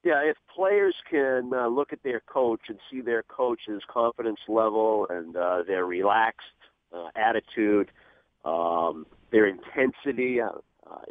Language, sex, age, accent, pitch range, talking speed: English, male, 50-69, American, 110-135 Hz, 140 wpm